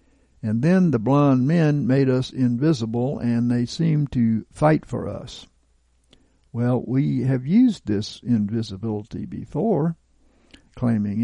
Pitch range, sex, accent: 110-150 Hz, male, American